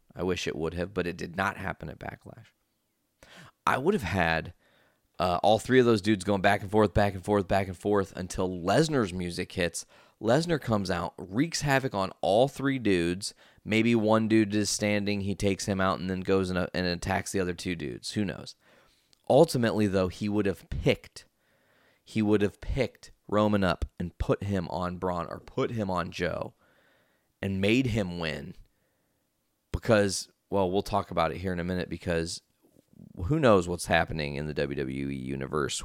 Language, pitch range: English, 90-105 Hz